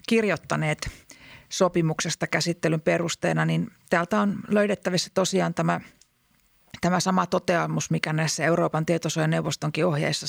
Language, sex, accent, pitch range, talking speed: Finnish, female, native, 160-190 Hz, 105 wpm